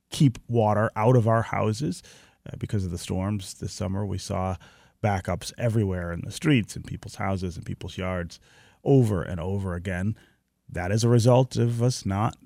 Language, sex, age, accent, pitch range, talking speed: English, male, 30-49, American, 100-135 Hz, 180 wpm